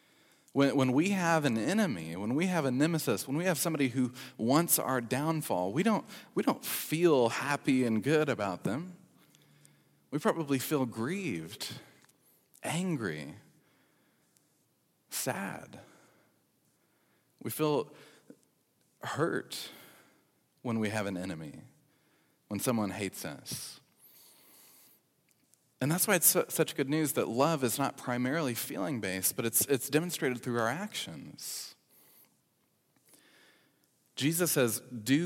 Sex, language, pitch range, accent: male, English, 100-145 Hz, American